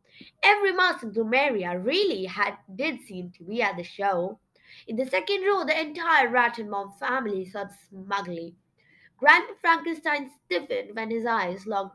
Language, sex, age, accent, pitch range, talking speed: English, female, 20-39, Indian, 195-285 Hz, 160 wpm